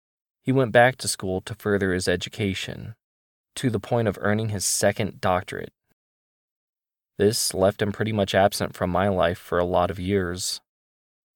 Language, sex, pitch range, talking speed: English, male, 90-110 Hz, 165 wpm